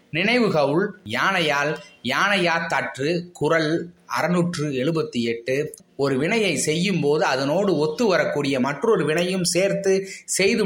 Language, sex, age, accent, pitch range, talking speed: Tamil, male, 20-39, native, 150-190 Hz, 105 wpm